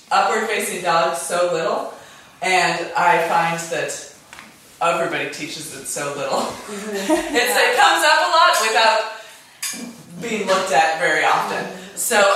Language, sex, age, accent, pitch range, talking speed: English, female, 20-39, American, 165-215 Hz, 130 wpm